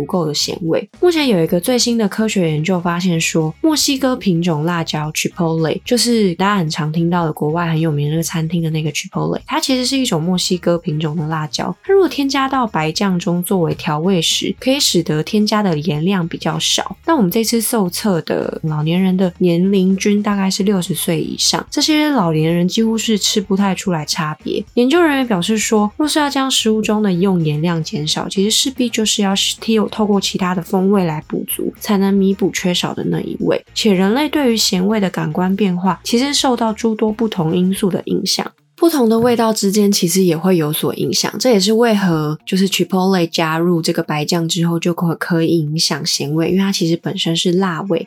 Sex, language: female, Chinese